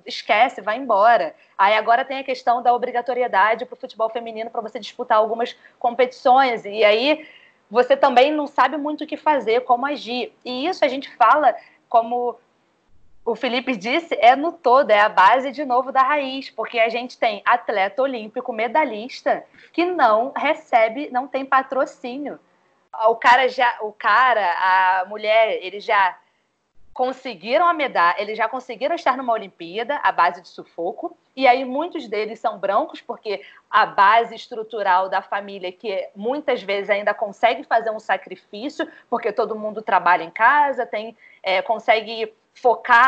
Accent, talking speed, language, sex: Brazilian, 155 wpm, Portuguese, female